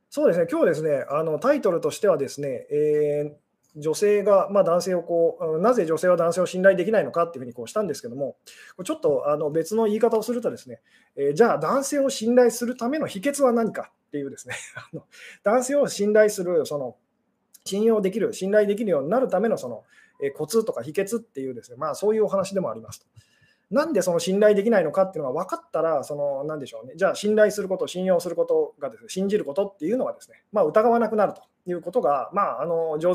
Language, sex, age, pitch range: Japanese, male, 20-39, 165-250 Hz